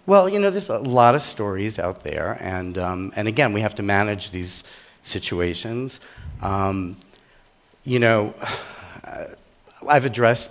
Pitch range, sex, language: 105-135 Hz, male, English